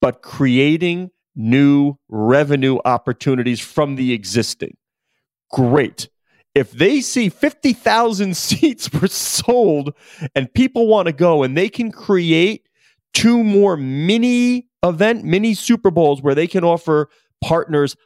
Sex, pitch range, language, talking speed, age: male, 130-200 Hz, English, 115 wpm, 30-49